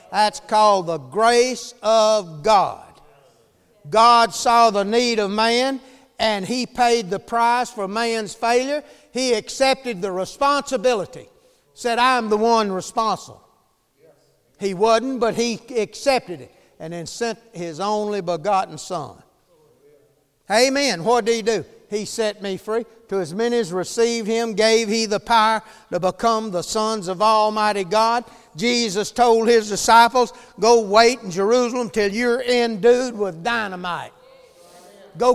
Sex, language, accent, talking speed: male, English, American, 140 wpm